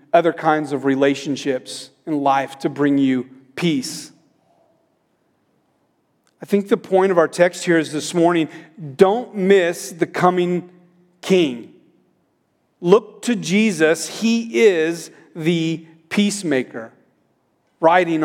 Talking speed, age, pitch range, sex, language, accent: 110 wpm, 40-59, 155-195 Hz, male, English, American